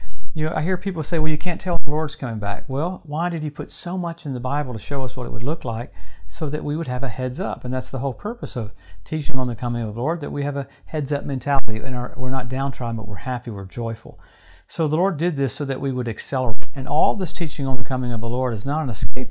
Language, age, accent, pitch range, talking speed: English, 50-69, American, 115-145 Hz, 285 wpm